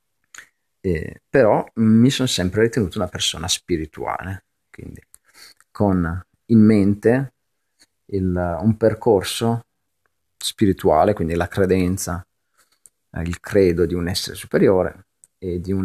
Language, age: Italian, 40-59